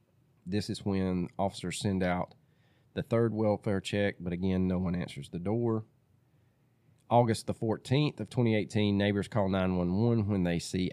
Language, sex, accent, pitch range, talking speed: English, male, American, 95-130 Hz, 155 wpm